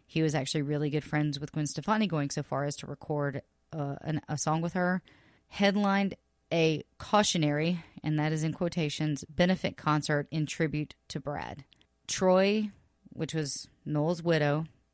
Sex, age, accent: female, 30-49, American